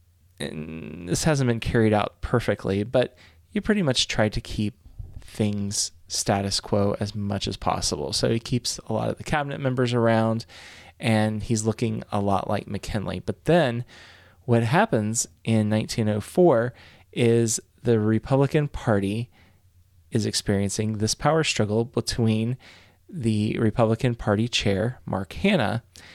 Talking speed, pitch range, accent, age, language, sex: 135 wpm, 95-120 Hz, American, 20-39, English, male